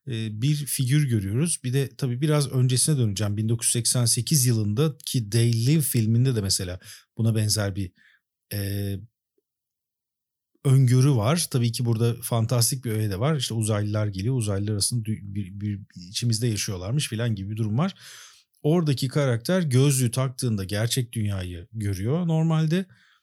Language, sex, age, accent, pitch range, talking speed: Turkish, male, 50-69, native, 110-135 Hz, 135 wpm